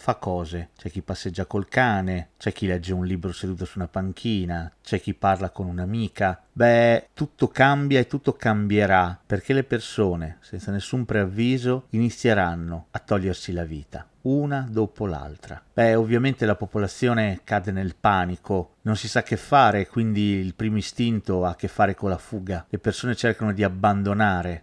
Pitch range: 95-120 Hz